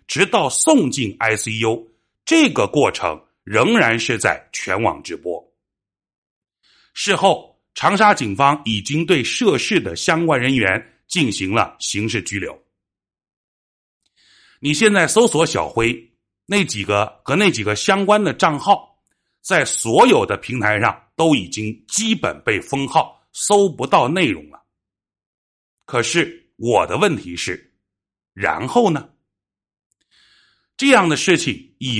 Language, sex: Chinese, male